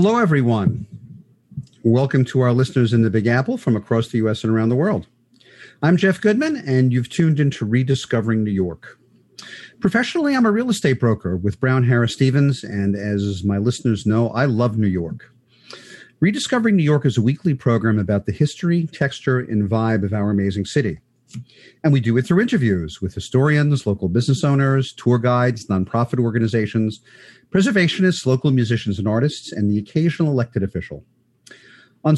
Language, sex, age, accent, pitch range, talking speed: English, male, 50-69, American, 110-150 Hz, 170 wpm